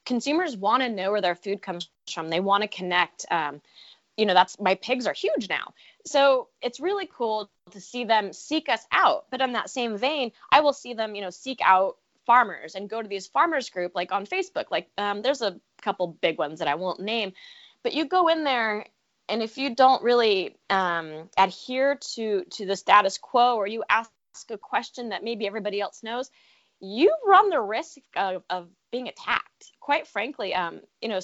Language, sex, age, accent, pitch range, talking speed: English, female, 20-39, American, 195-270 Hz, 205 wpm